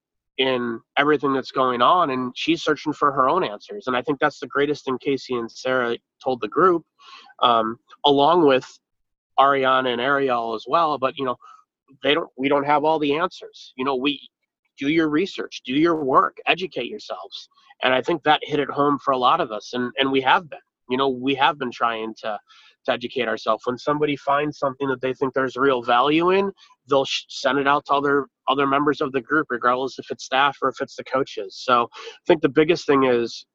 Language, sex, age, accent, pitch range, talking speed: English, male, 30-49, American, 125-150 Hz, 215 wpm